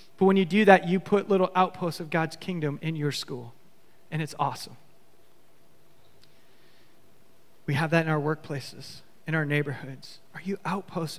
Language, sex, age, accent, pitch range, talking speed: English, male, 30-49, American, 150-185 Hz, 160 wpm